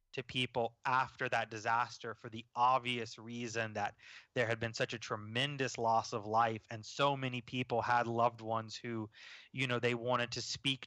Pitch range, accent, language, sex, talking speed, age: 115-135 Hz, American, English, male, 180 wpm, 20-39